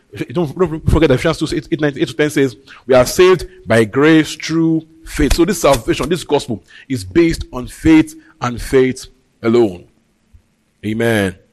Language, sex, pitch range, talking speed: English, male, 115-165 Hz, 140 wpm